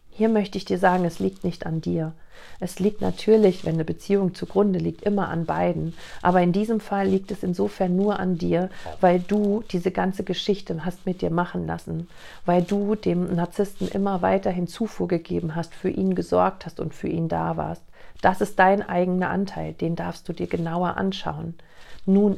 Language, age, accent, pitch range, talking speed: German, 40-59, German, 165-195 Hz, 190 wpm